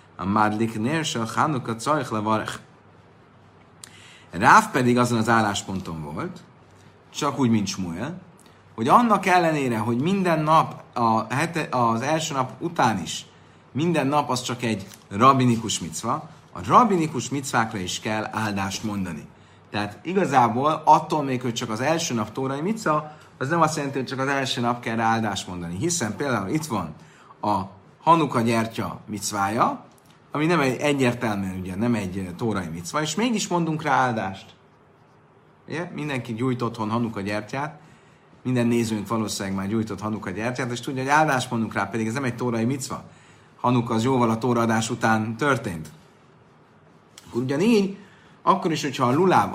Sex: male